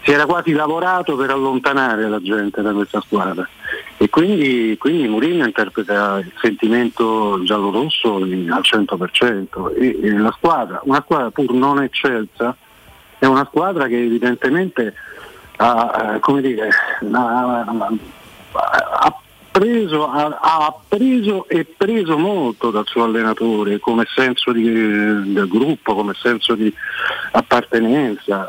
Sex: male